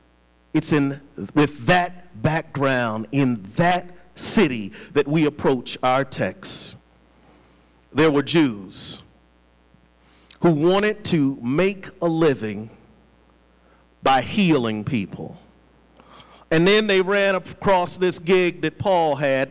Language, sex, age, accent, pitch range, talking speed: English, male, 50-69, American, 130-200 Hz, 110 wpm